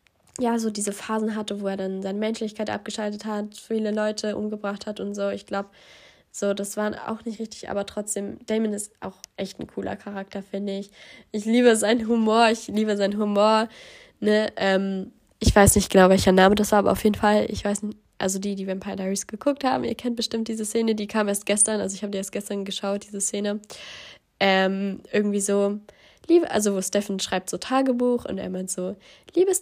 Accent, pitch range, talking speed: German, 195-225 Hz, 205 wpm